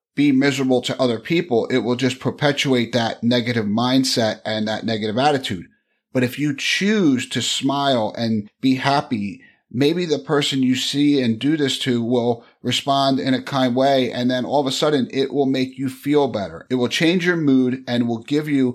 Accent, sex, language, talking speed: American, male, English, 195 wpm